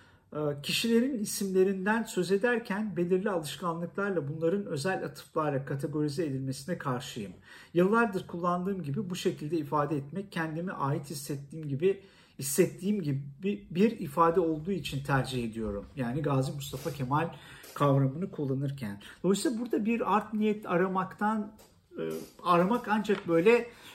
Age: 50-69